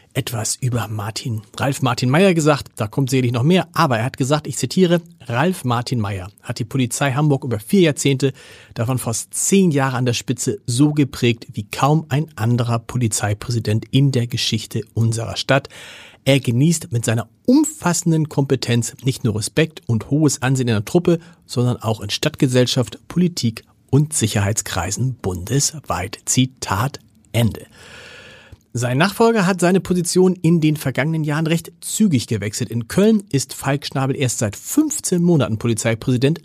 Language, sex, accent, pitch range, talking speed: German, male, German, 115-155 Hz, 155 wpm